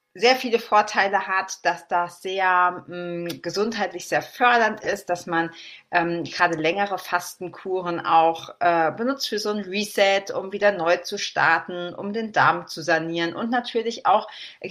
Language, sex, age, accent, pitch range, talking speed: German, female, 40-59, German, 170-205 Hz, 155 wpm